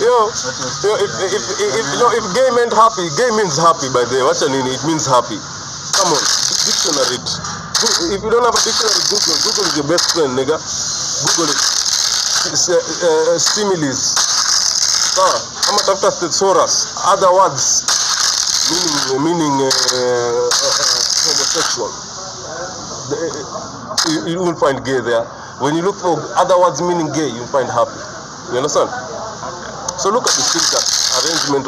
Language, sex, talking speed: English, male, 160 wpm